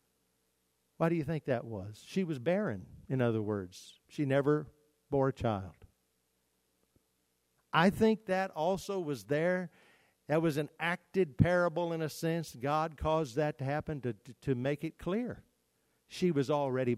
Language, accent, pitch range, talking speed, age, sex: English, American, 110-145 Hz, 155 wpm, 50-69, male